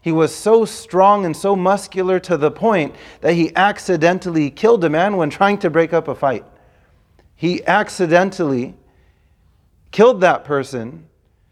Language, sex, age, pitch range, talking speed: English, male, 40-59, 120-170 Hz, 145 wpm